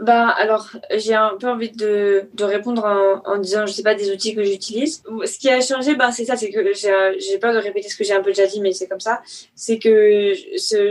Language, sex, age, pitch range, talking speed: French, female, 20-39, 200-245 Hz, 260 wpm